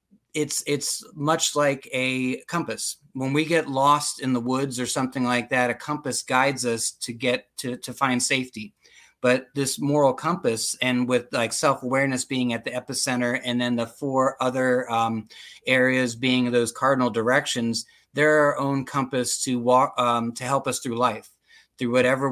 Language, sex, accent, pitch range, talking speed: English, male, American, 120-135 Hz, 175 wpm